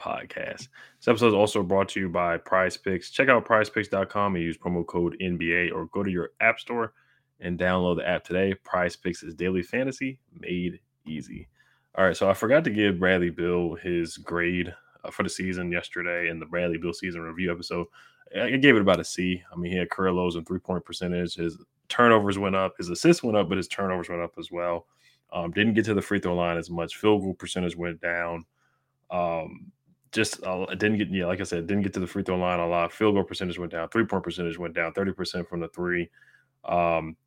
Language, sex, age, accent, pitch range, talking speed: English, male, 20-39, American, 85-100 Hz, 220 wpm